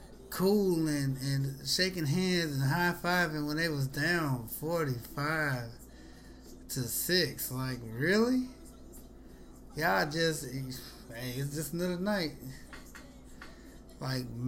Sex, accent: male, American